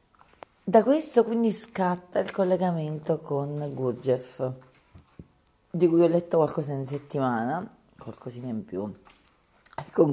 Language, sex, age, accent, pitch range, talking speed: Italian, female, 40-59, native, 135-195 Hz, 120 wpm